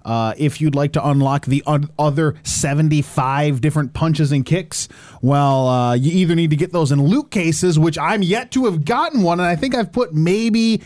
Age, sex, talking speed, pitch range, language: 20-39, male, 205 wpm, 150-205 Hz, English